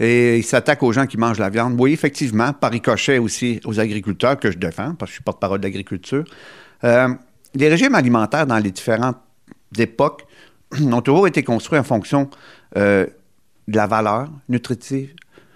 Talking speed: 175 wpm